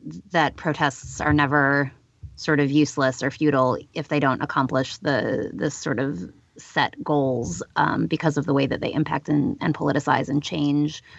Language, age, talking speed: English, 30-49, 170 wpm